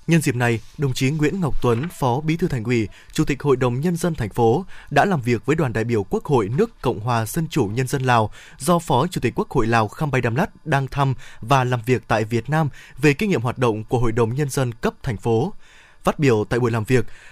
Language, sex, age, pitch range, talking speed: Vietnamese, male, 20-39, 125-160 Hz, 265 wpm